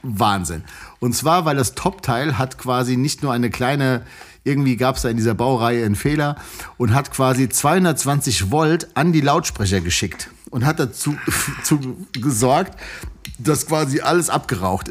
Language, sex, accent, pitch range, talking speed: German, male, German, 125-170 Hz, 155 wpm